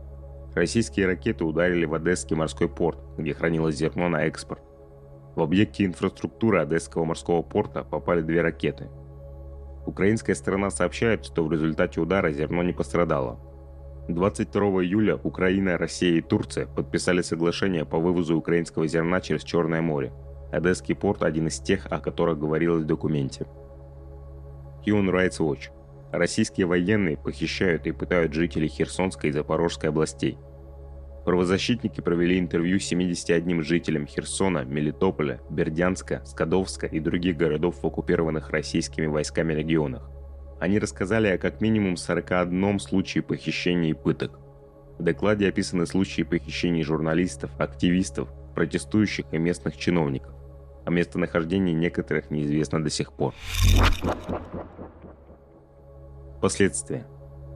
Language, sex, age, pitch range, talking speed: Russian, male, 30-49, 70-90 Hz, 115 wpm